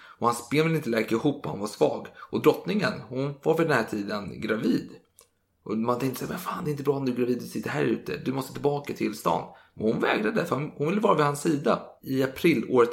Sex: male